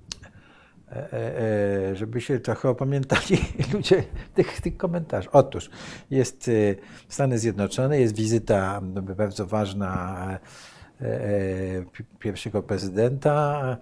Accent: native